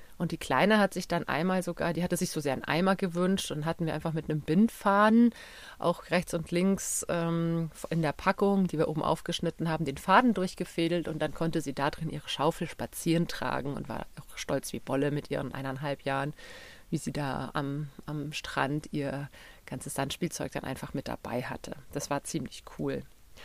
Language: German